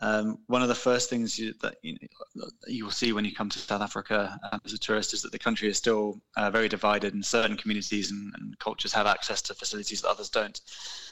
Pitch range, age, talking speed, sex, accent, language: 105-120 Hz, 20-39, 245 wpm, male, British, English